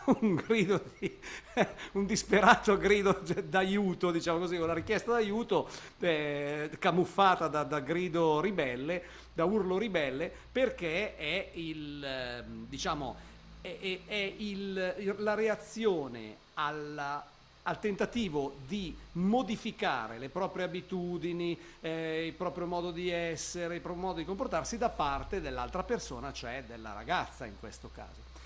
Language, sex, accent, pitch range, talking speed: Italian, male, native, 160-205 Hz, 130 wpm